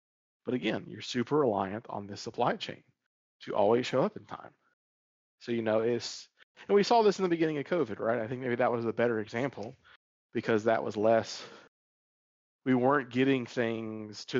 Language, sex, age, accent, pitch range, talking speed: English, male, 40-59, American, 105-130 Hz, 190 wpm